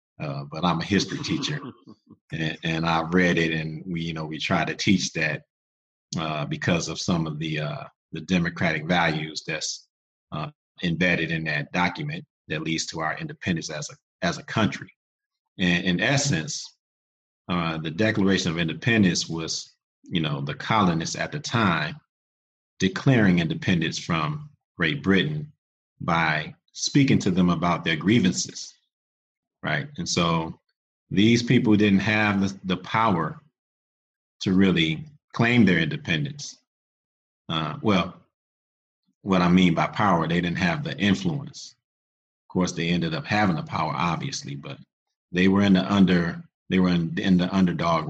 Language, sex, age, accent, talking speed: English, male, 40-59, American, 150 wpm